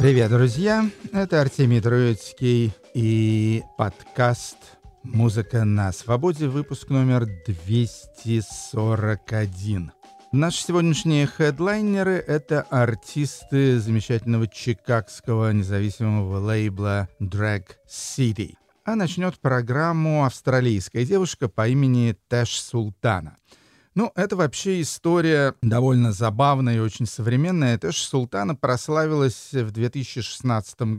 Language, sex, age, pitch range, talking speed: Russian, male, 50-69, 110-140 Hz, 95 wpm